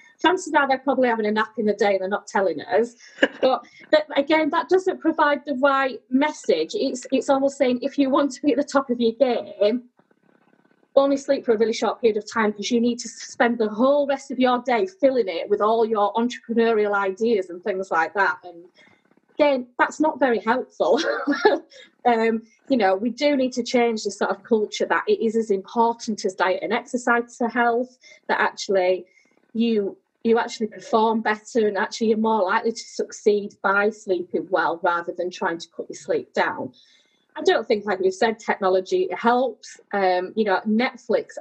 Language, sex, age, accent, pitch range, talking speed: English, female, 30-49, British, 210-275 Hz, 195 wpm